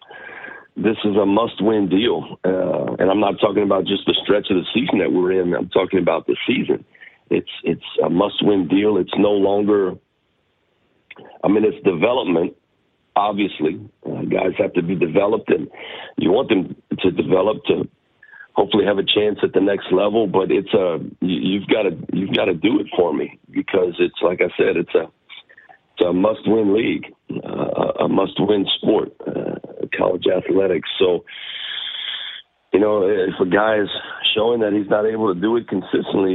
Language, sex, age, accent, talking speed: English, male, 50-69, American, 175 wpm